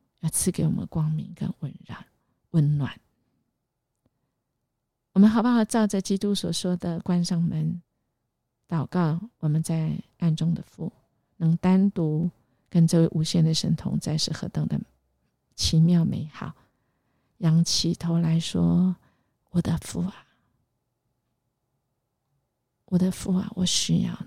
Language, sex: Chinese, female